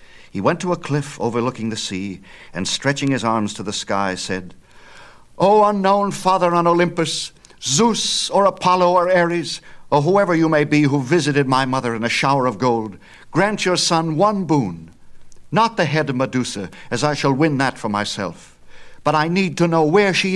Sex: male